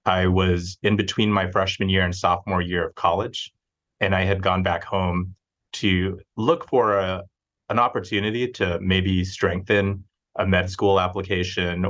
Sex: male